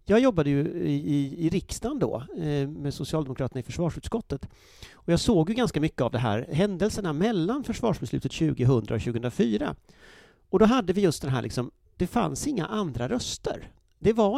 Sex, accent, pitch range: male, native, 120-175 Hz